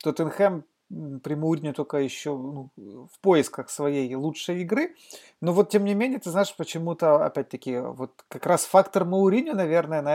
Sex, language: male, Russian